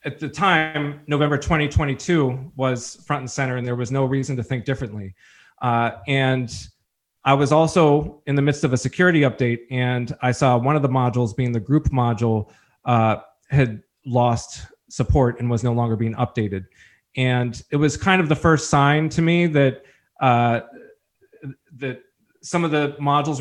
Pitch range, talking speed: 125-155 Hz, 170 wpm